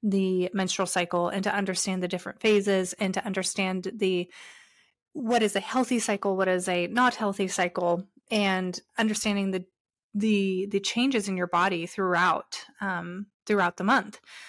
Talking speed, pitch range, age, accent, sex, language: 155 wpm, 185-220 Hz, 20-39, American, female, English